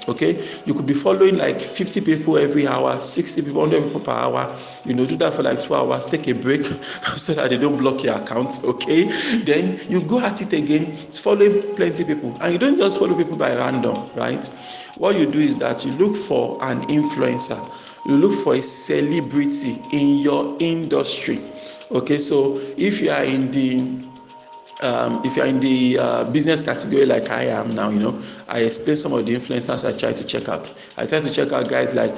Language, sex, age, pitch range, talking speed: English, male, 50-69, 120-185 Hz, 210 wpm